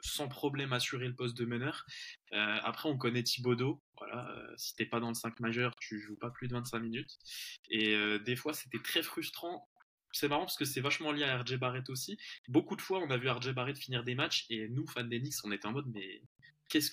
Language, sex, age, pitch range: French, male, 20-39, 120-145 Hz